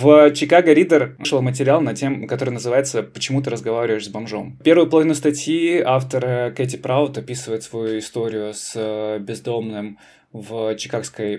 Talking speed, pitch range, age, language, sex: 140 wpm, 110-135 Hz, 20-39, Russian, male